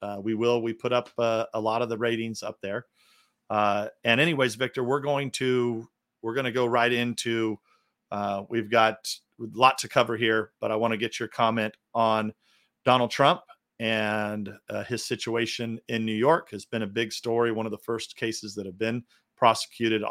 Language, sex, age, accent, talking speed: English, male, 50-69, American, 195 wpm